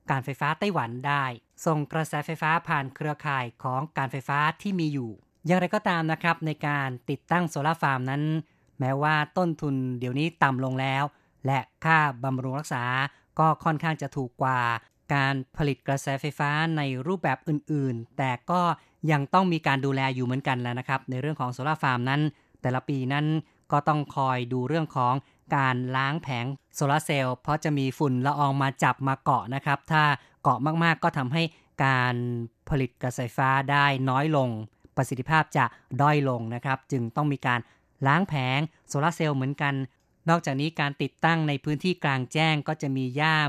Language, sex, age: Thai, female, 20-39